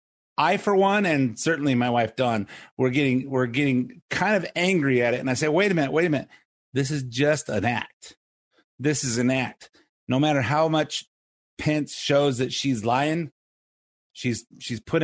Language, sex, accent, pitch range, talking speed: English, male, American, 130-170 Hz, 190 wpm